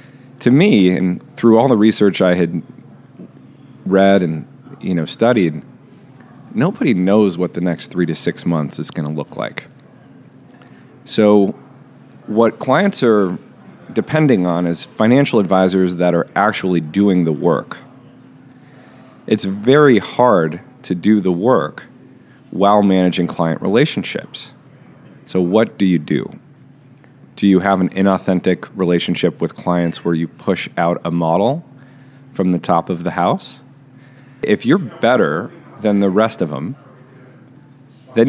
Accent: American